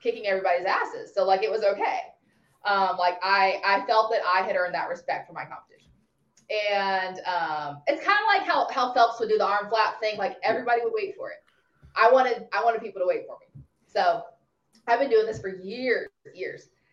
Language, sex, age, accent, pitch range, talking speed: English, female, 20-39, American, 185-270 Hz, 215 wpm